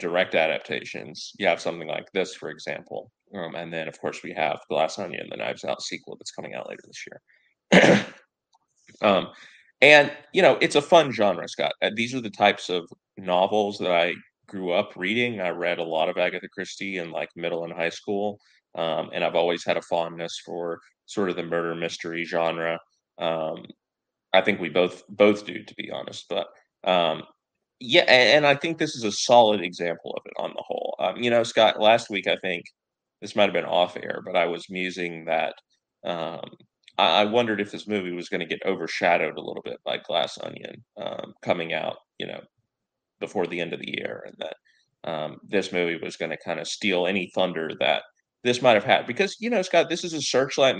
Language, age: English, 30-49